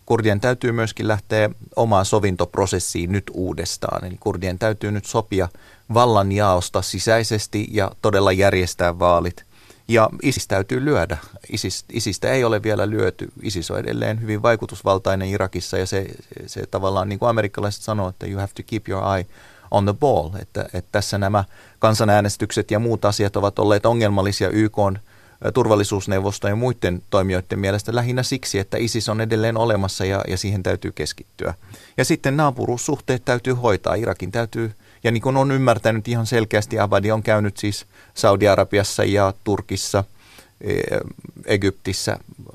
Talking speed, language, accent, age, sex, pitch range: 150 wpm, Finnish, native, 30-49, male, 95-115 Hz